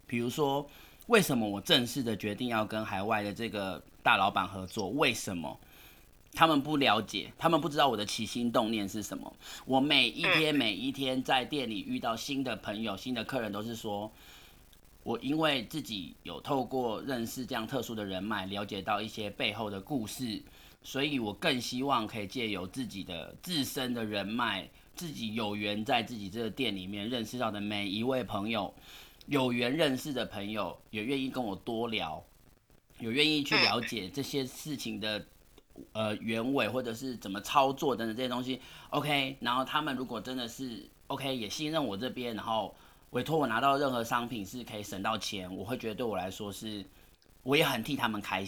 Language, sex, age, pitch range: Chinese, male, 30-49, 105-135 Hz